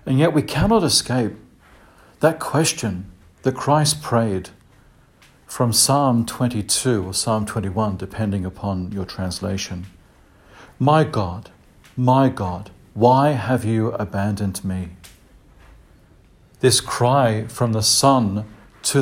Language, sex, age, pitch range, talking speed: English, male, 50-69, 100-125 Hz, 110 wpm